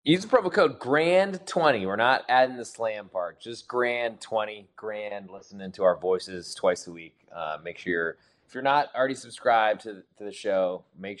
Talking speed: 195 wpm